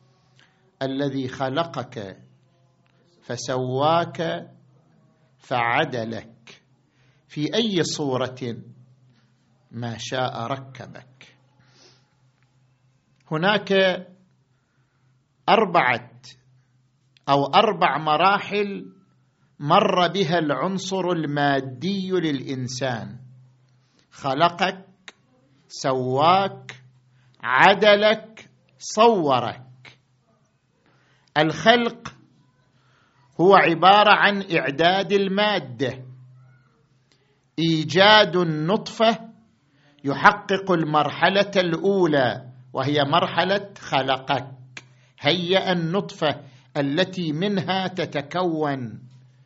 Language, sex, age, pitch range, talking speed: Arabic, male, 50-69, 130-175 Hz, 50 wpm